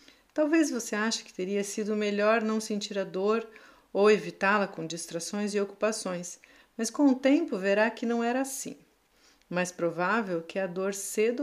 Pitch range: 185-240 Hz